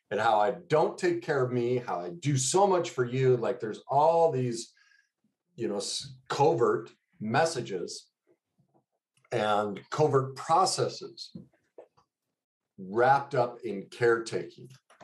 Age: 50-69